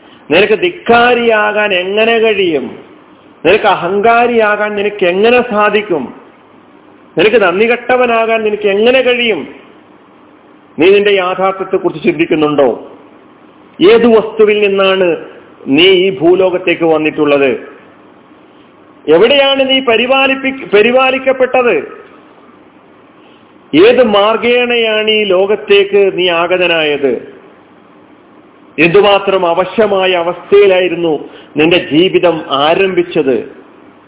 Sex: male